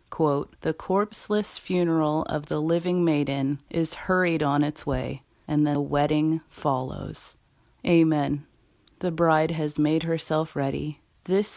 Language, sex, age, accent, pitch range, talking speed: English, female, 30-49, American, 150-170 Hz, 125 wpm